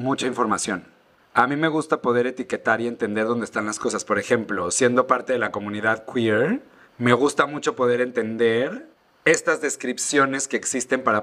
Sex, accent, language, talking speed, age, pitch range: male, Mexican, Spanish, 170 wpm, 30-49, 115-130 Hz